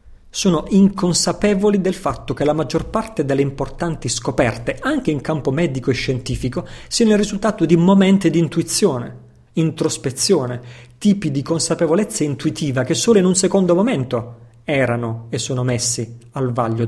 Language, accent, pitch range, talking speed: Italian, native, 125-165 Hz, 145 wpm